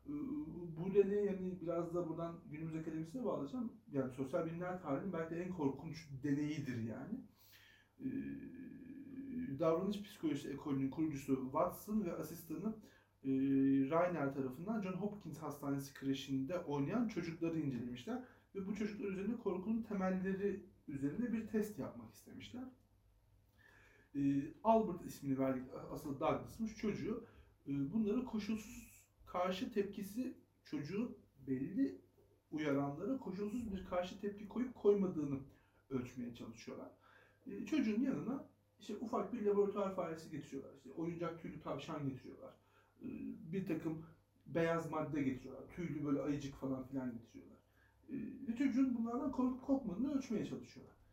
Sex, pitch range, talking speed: male, 140-225 Hz, 115 wpm